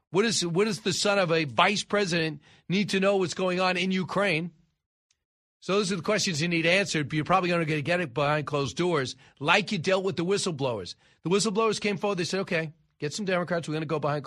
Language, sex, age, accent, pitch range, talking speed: English, male, 40-59, American, 160-205 Hz, 240 wpm